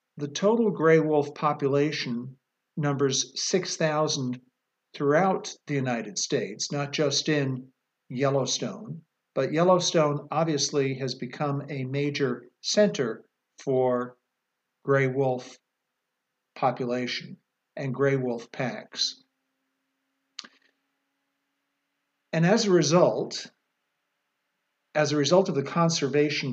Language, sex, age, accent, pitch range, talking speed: English, male, 50-69, American, 130-165 Hz, 95 wpm